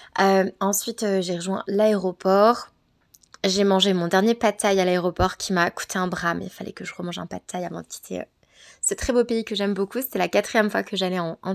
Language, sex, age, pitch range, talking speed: French, female, 20-39, 185-210 Hz, 245 wpm